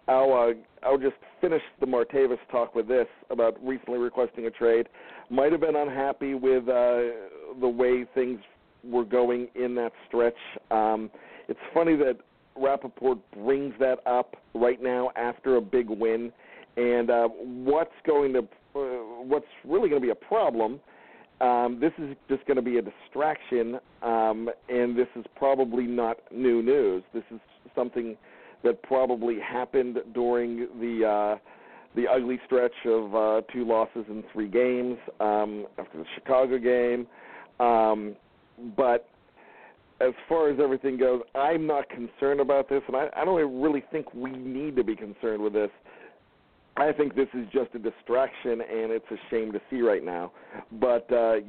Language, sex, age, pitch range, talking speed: English, male, 50-69, 115-135 Hz, 160 wpm